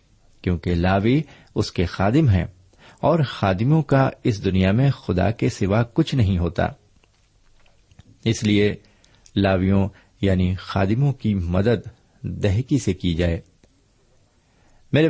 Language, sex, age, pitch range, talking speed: Urdu, male, 50-69, 95-130 Hz, 120 wpm